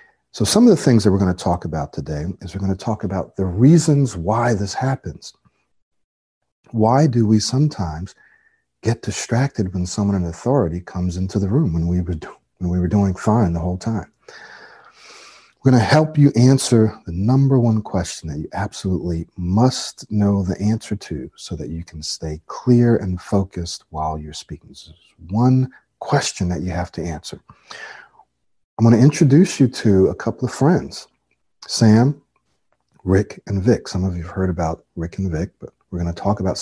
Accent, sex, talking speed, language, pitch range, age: American, male, 180 wpm, English, 85-115 Hz, 40-59